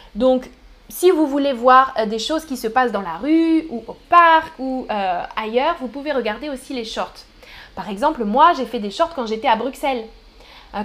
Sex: female